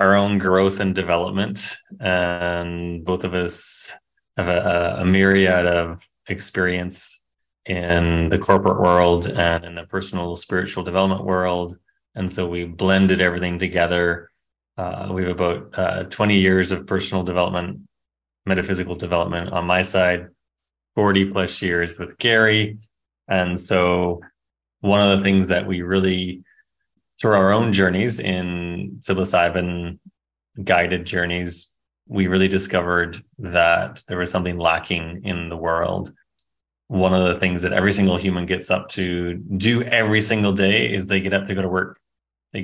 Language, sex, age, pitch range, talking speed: English, male, 20-39, 85-95 Hz, 145 wpm